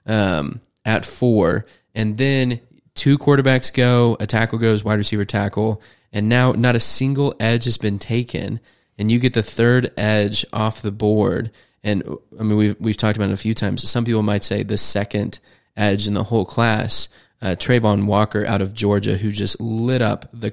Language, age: English, 20-39